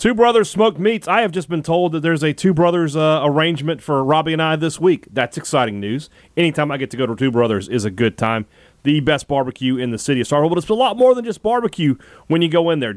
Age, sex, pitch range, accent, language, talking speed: 30-49, male, 120-165 Hz, American, English, 270 wpm